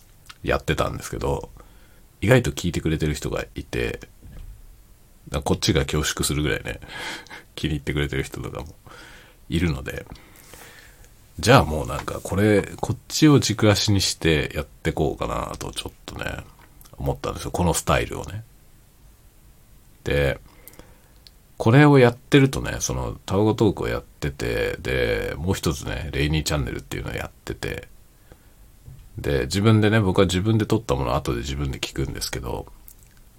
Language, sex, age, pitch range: Japanese, male, 40-59, 75-115 Hz